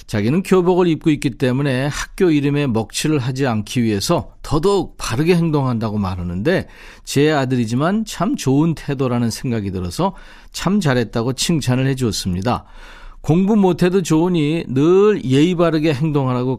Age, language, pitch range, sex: 40-59, Korean, 115-165 Hz, male